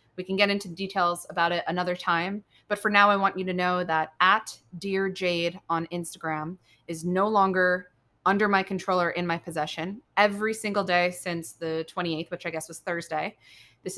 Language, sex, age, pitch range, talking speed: English, female, 20-39, 165-190 Hz, 195 wpm